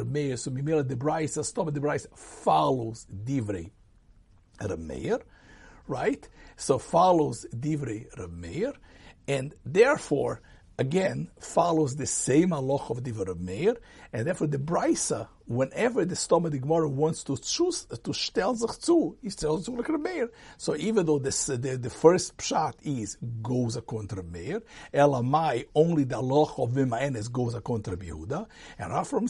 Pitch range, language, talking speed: 120-165 Hz, English, 145 wpm